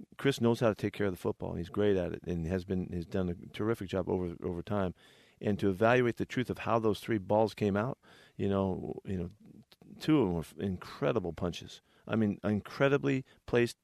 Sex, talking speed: male, 230 wpm